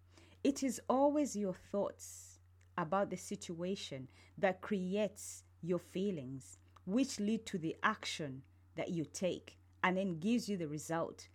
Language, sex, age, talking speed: English, female, 30-49, 135 wpm